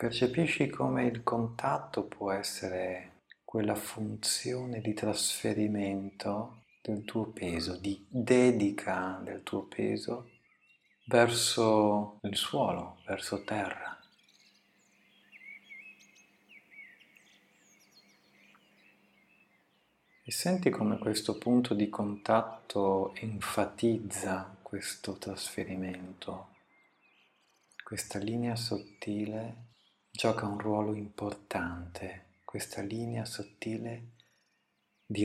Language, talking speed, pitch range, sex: Italian, 75 wpm, 95-115 Hz, male